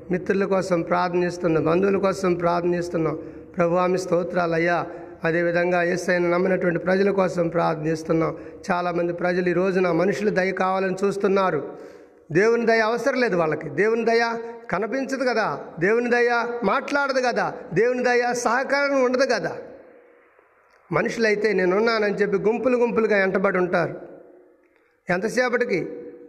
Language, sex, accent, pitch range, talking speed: Telugu, male, native, 180-250 Hz, 110 wpm